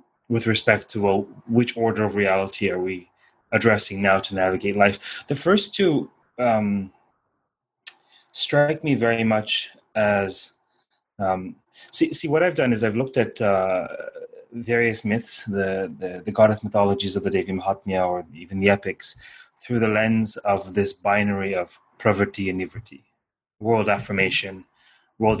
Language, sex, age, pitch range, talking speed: English, male, 30-49, 95-115 Hz, 145 wpm